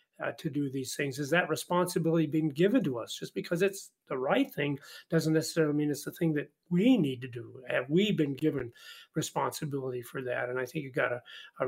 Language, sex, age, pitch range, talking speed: English, male, 40-59, 140-170 Hz, 220 wpm